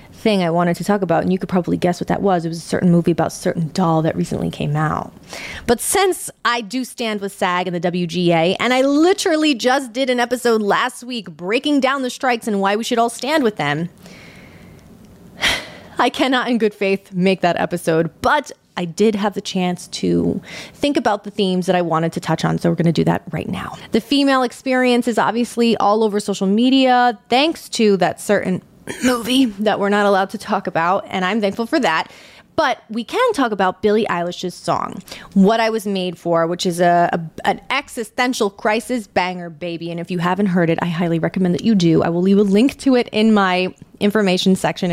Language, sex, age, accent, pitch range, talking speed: English, female, 30-49, American, 180-240 Hz, 215 wpm